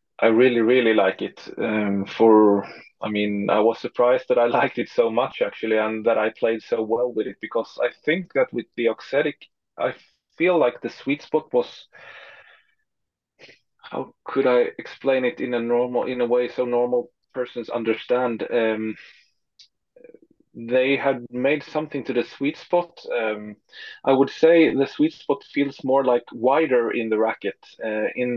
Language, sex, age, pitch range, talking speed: English, male, 20-39, 115-140 Hz, 170 wpm